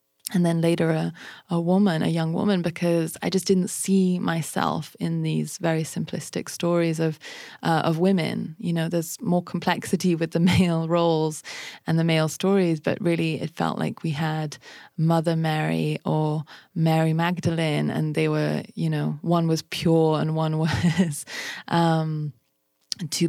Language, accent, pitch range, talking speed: English, British, 150-170 Hz, 160 wpm